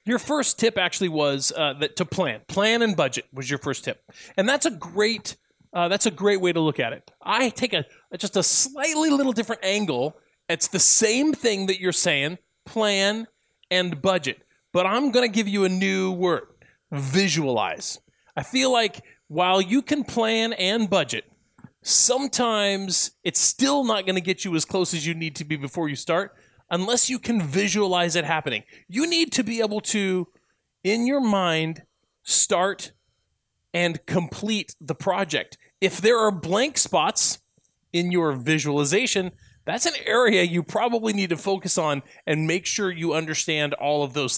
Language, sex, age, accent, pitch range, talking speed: English, male, 30-49, American, 160-220 Hz, 175 wpm